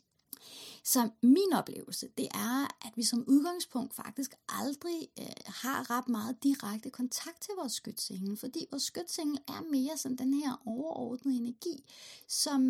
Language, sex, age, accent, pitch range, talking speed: Danish, female, 30-49, native, 225-270 Hz, 145 wpm